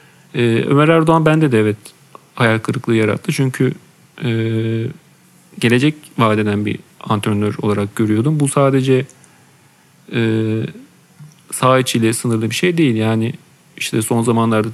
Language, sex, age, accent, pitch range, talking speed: Turkish, male, 40-59, native, 115-150 Hz, 110 wpm